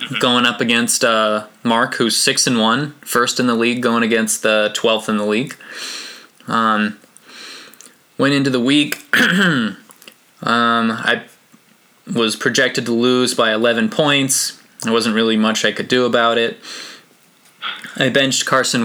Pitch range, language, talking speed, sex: 110-125 Hz, English, 140 wpm, male